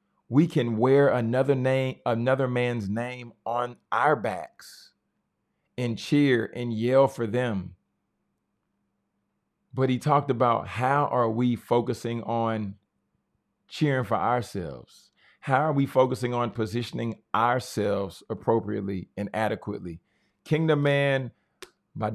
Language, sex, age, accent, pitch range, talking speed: English, male, 40-59, American, 110-130 Hz, 115 wpm